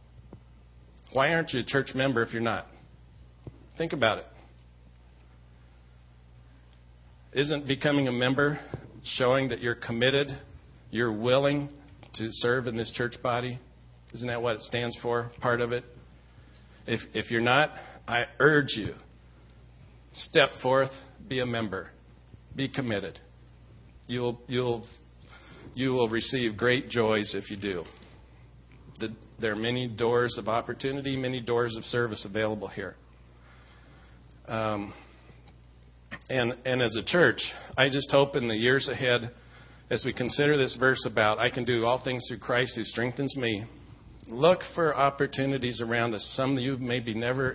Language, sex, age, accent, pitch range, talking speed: English, male, 50-69, American, 95-125 Hz, 145 wpm